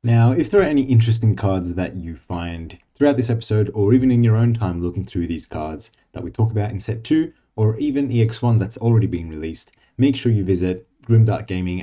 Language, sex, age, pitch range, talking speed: English, male, 20-39, 90-120 Hz, 220 wpm